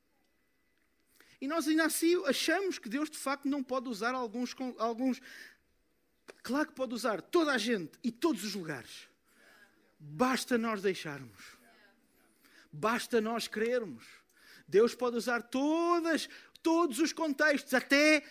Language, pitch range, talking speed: Portuguese, 240-330 Hz, 130 wpm